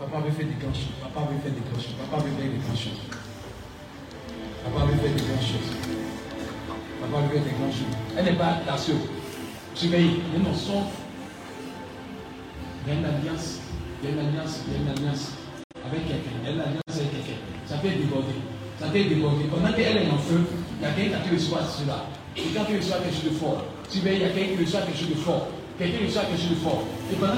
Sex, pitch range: male, 145-185 Hz